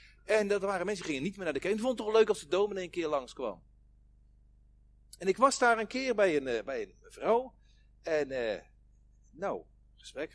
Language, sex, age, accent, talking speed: Dutch, male, 40-59, Dutch, 220 wpm